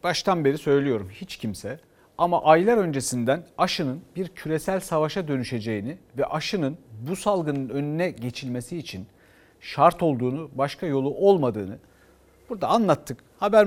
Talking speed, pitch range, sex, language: 125 wpm, 135-195 Hz, male, Turkish